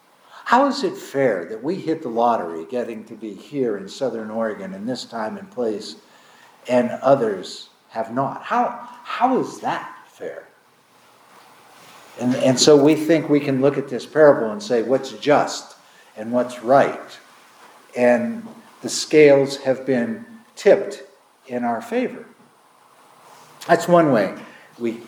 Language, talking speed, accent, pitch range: English, 145 wpm, American, 130-175 Hz